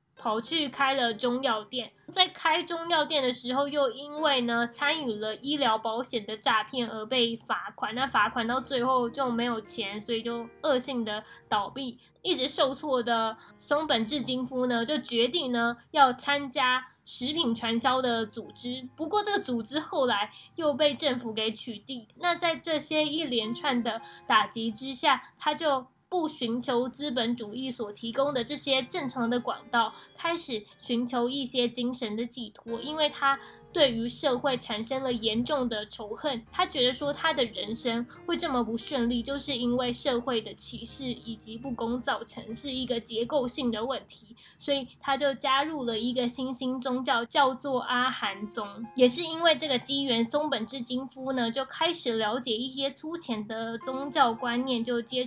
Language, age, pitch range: Chinese, 10-29, 230-275 Hz